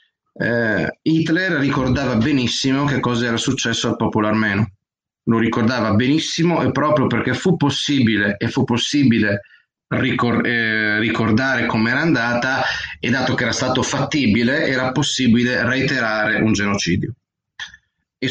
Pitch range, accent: 115-145 Hz, native